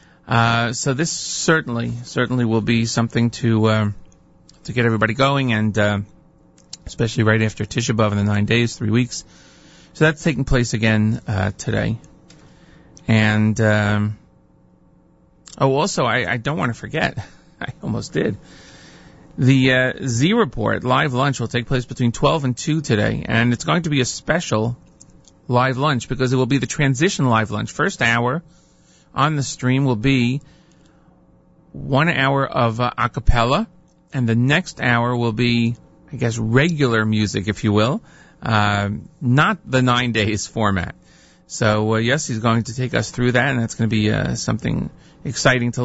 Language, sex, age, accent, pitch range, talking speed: English, male, 40-59, American, 110-135 Hz, 165 wpm